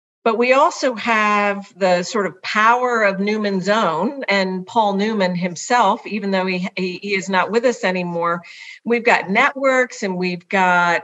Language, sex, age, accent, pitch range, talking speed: English, female, 50-69, American, 190-240 Hz, 165 wpm